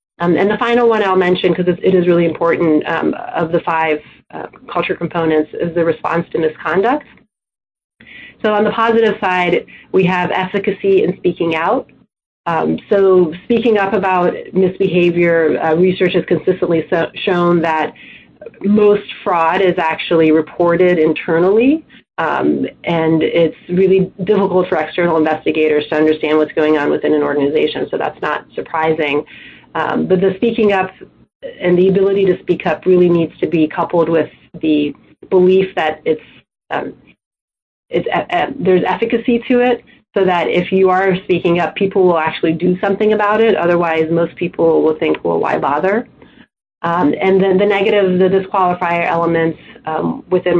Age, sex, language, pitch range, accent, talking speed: 30-49, female, English, 160-190 Hz, American, 160 wpm